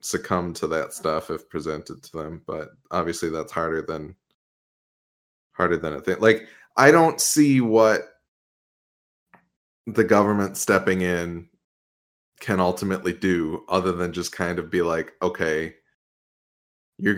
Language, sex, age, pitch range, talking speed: English, male, 20-39, 85-105 Hz, 135 wpm